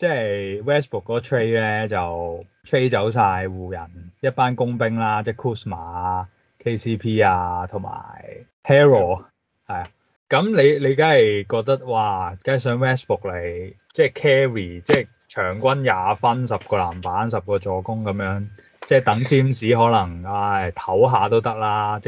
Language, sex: Chinese, male